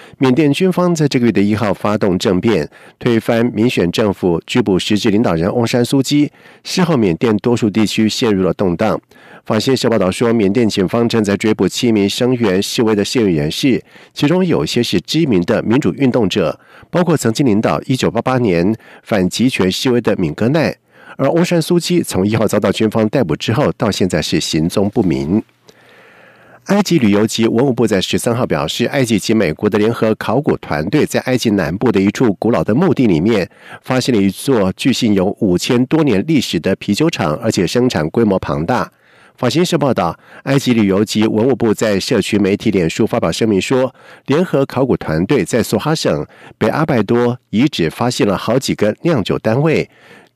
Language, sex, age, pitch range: Chinese, male, 50-69, 105-130 Hz